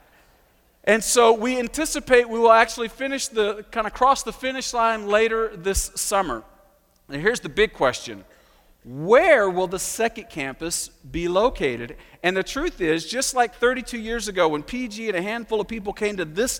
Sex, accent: male, American